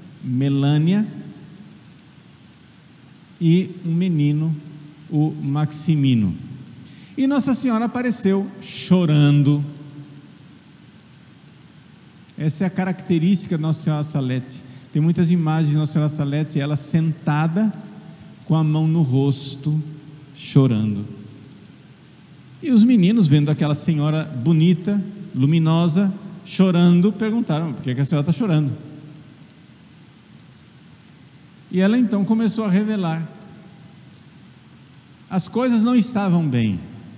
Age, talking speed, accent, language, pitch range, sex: 50-69, 100 wpm, Brazilian, Portuguese, 150-185 Hz, male